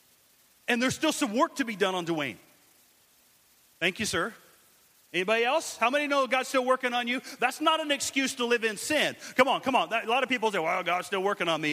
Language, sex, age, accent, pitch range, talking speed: English, male, 40-59, American, 210-295 Hz, 235 wpm